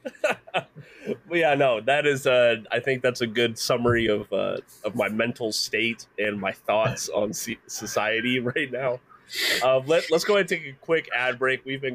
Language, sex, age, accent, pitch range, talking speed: English, male, 20-39, American, 105-135 Hz, 195 wpm